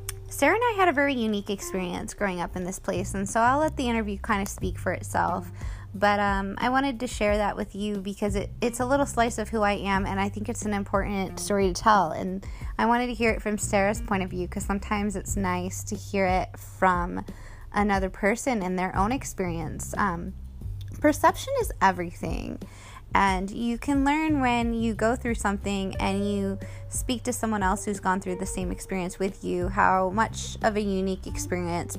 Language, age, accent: English, 20-39, American